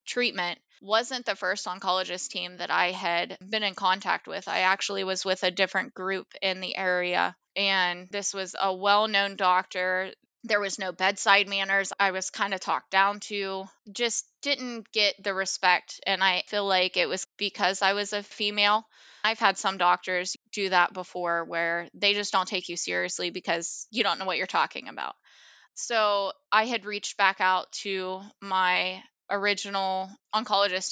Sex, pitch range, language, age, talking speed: female, 185-205 Hz, English, 20-39, 175 wpm